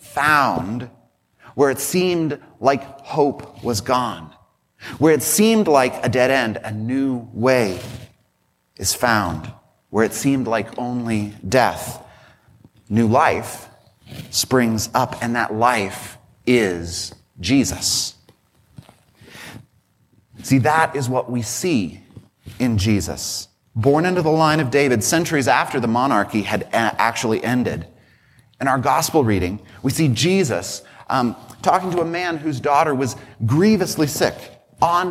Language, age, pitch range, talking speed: English, 30-49, 110-135 Hz, 125 wpm